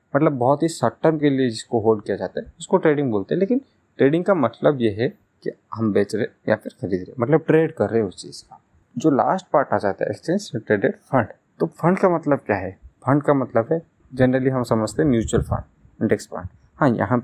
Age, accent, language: 30-49, native, Hindi